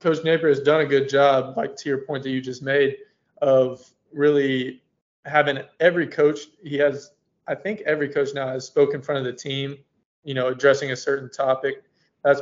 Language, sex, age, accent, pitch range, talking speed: English, male, 20-39, American, 130-145 Hz, 200 wpm